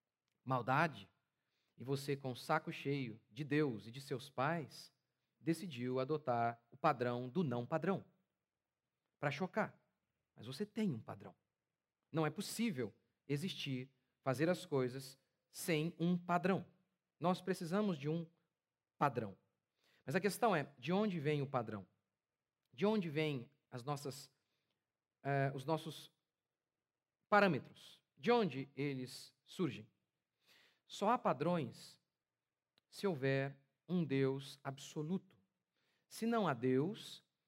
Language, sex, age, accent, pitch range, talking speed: Portuguese, male, 40-59, Brazilian, 130-175 Hz, 115 wpm